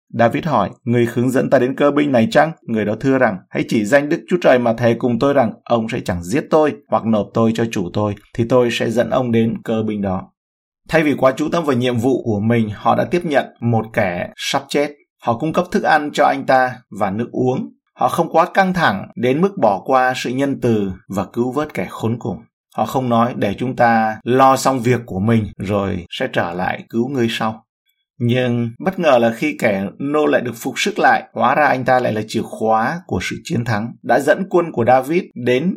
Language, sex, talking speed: Vietnamese, male, 235 wpm